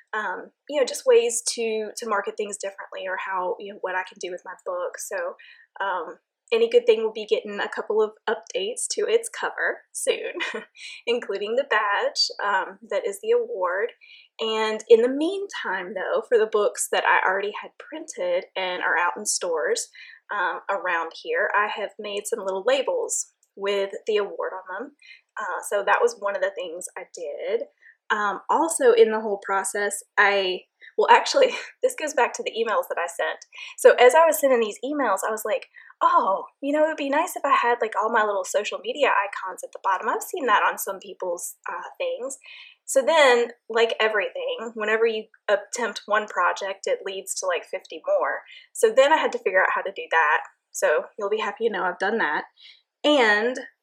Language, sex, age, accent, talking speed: English, female, 20-39, American, 200 wpm